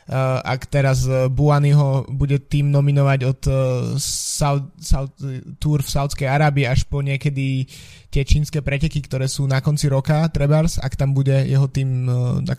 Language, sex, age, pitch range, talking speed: Slovak, male, 20-39, 130-145 Hz, 150 wpm